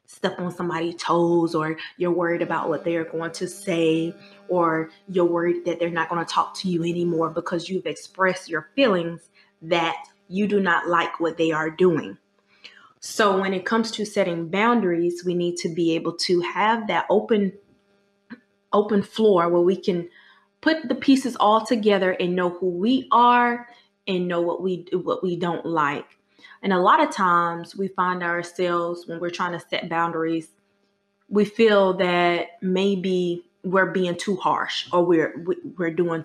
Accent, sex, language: American, female, English